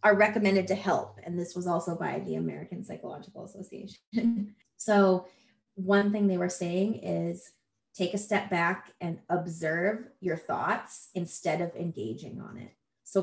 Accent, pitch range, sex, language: American, 170-205 Hz, female, English